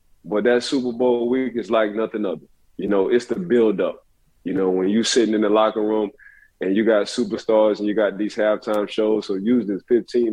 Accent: American